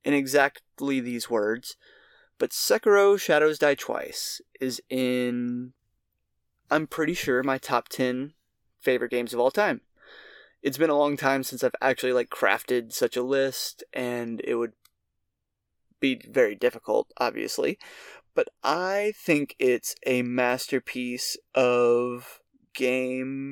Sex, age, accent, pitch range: male, 20-39, American, 125-165 Hz